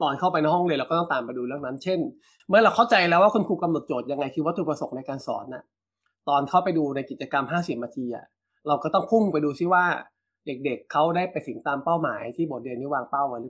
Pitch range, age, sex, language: 135-165 Hz, 20-39, male, Thai